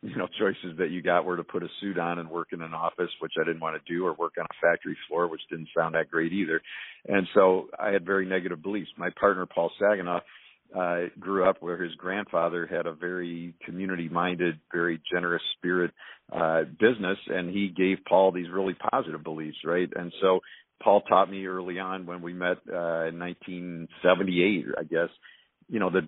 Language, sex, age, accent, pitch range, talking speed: English, male, 50-69, American, 85-95 Hz, 200 wpm